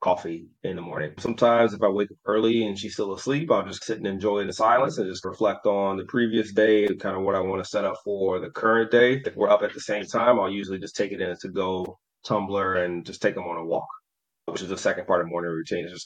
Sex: male